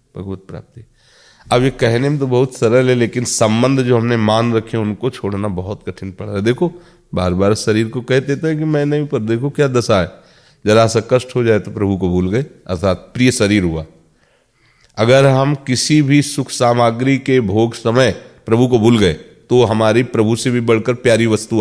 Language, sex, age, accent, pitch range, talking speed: Hindi, male, 40-59, native, 95-130 Hz, 200 wpm